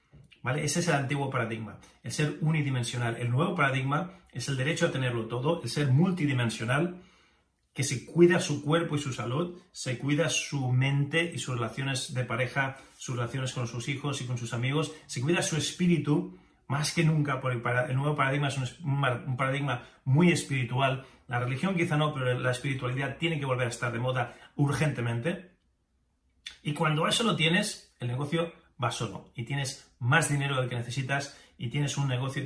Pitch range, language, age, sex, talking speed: 125-150 Hz, Spanish, 30-49, male, 190 wpm